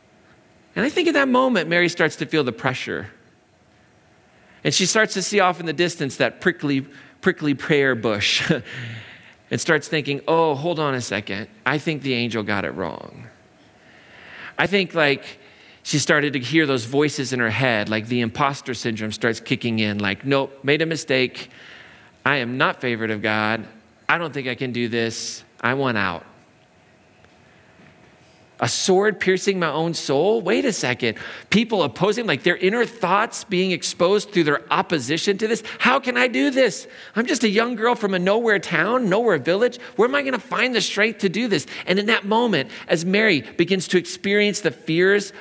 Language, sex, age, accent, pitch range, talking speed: English, male, 40-59, American, 130-190 Hz, 185 wpm